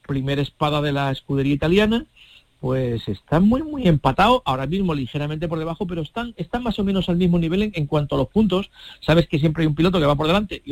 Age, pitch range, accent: 50-69, 140-180 Hz, Spanish